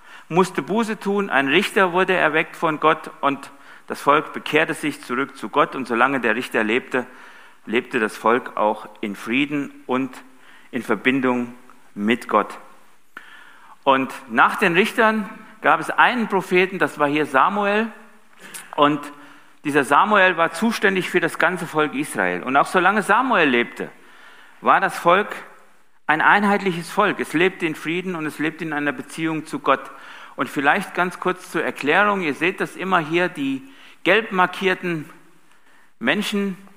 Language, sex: German, male